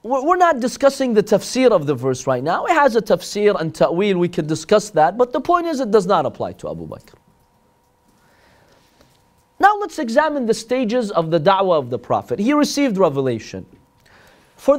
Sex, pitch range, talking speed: male, 155-215 Hz, 185 wpm